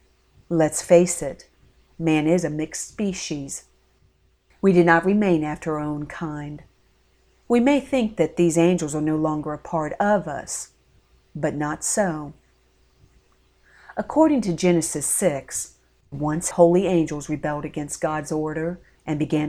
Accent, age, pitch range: American, 40-59, 150-180 Hz